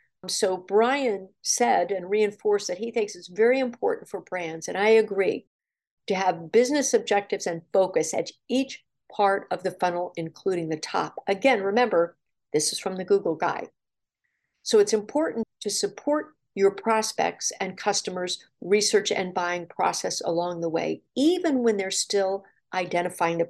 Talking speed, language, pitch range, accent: 155 wpm, English, 180-240 Hz, American